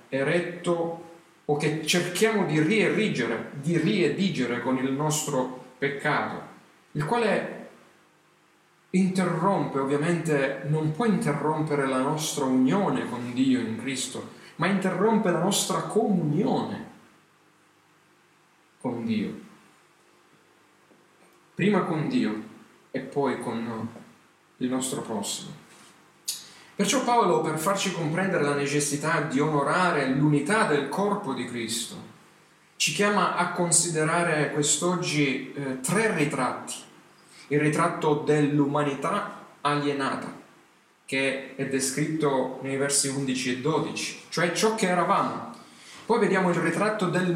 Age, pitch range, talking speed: 40-59, 135-180 Hz, 105 wpm